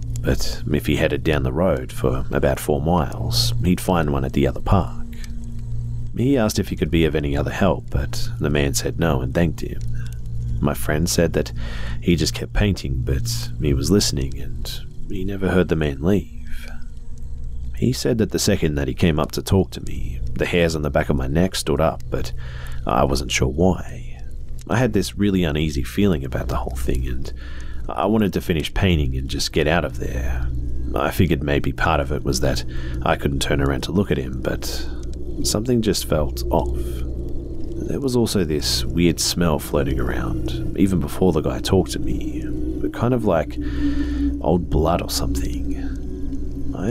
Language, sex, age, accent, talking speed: English, male, 40-59, Australian, 190 wpm